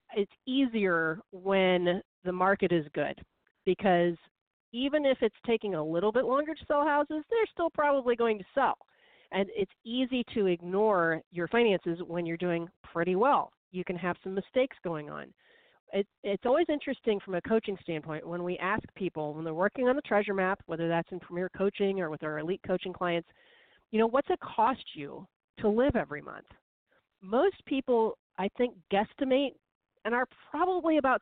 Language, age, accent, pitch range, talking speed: English, 40-59, American, 175-250 Hz, 180 wpm